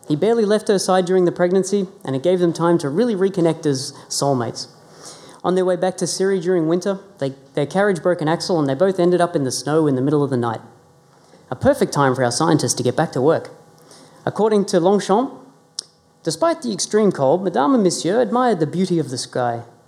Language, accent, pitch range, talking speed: English, Australian, 145-190 Hz, 220 wpm